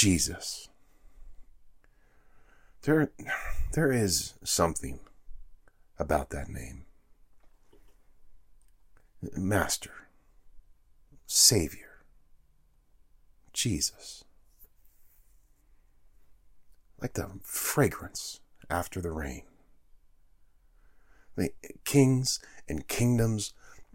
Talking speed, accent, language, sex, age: 60 wpm, American, English, male, 50-69